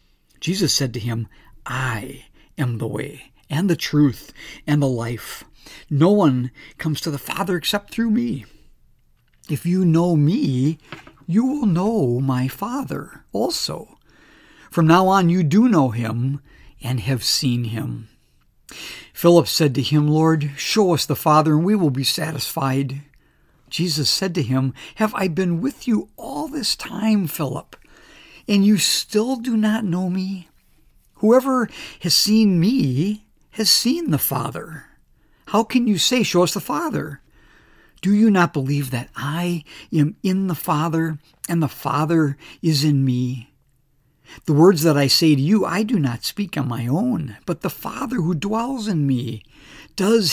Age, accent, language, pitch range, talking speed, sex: 60-79, American, English, 135-195 Hz, 155 wpm, male